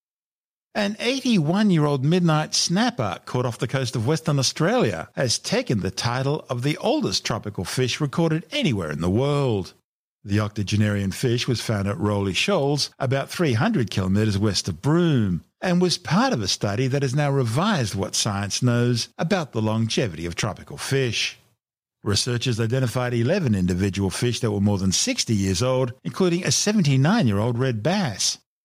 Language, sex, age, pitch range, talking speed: English, male, 50-69, 110-155 Hz, 155 wpm